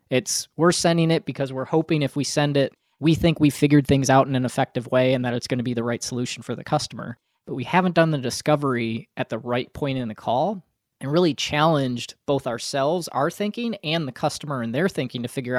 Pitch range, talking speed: 125-160 Hz, 235 wpm